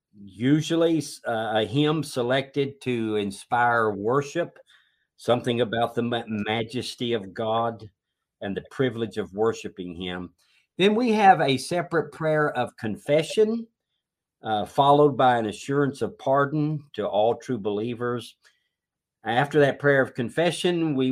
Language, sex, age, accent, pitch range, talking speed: English, male, 50-69, American, 115-145 Hz, 130 wpm